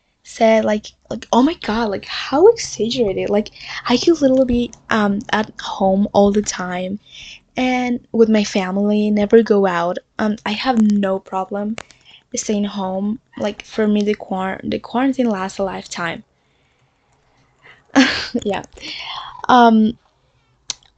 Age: 10-29